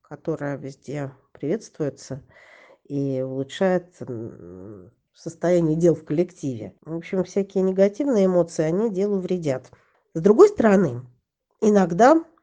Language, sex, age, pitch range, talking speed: Russian, female, 40-59, 160-210 Hz, 100 wpm